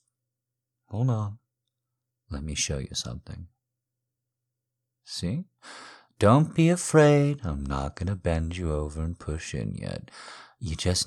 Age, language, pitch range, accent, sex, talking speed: 50-69, English, 75-125 Hz, American, male, 125 wpm